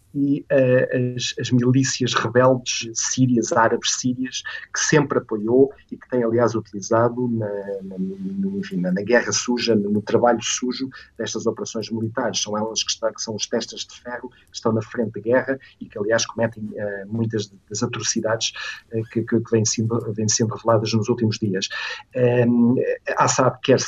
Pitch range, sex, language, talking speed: 110-125 Hz, male, Portuguese, 180 wpm